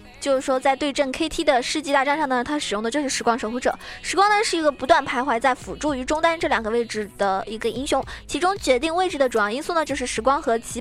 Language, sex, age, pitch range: Chinese, female, 20-39, 245-310 Hz